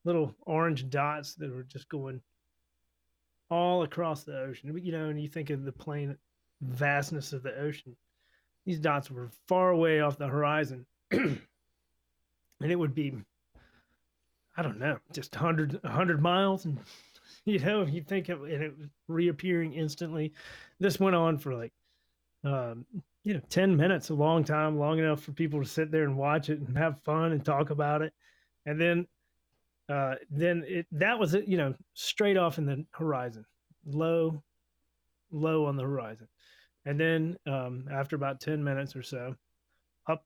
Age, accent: 30-49, American